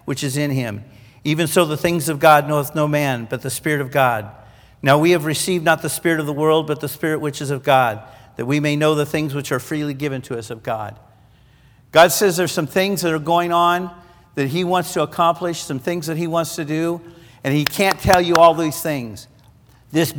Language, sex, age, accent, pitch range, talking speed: English, male, 50-69, American, 130-170 Hz, 235 wpm